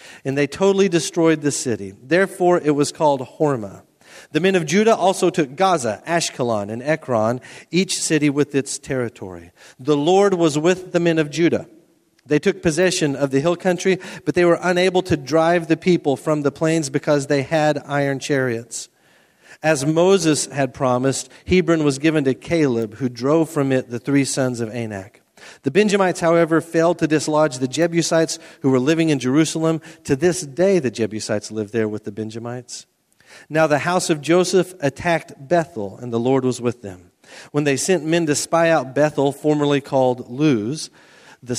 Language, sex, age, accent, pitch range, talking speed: English, male, 40-59, American, 130-170 Hz, 175 wpm